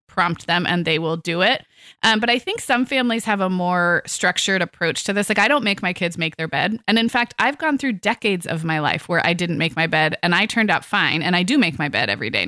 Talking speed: 280 wpm